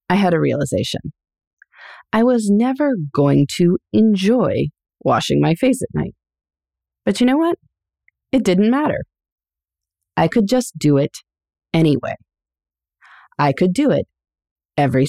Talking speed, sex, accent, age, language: 130 wpm, female, American, 30-49, English